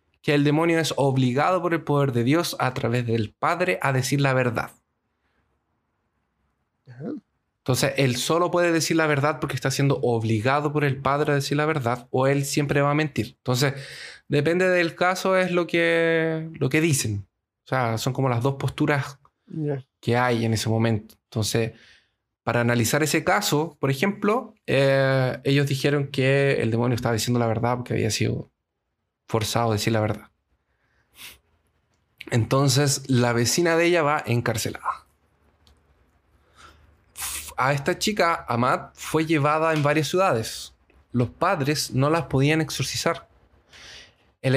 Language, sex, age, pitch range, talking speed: Spanish, male, 20-39, 115-155 Hz, 150 wpm